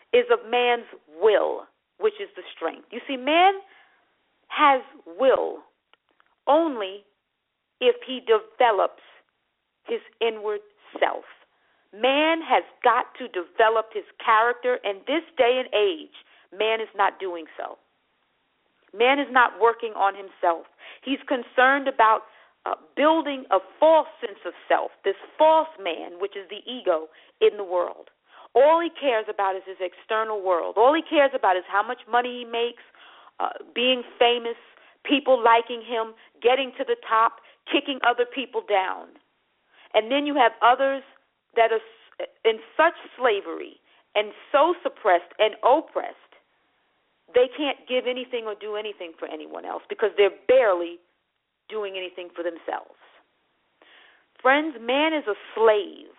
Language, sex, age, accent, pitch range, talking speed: English, female, 40-59, American, 215-310 Hz, 140 wpm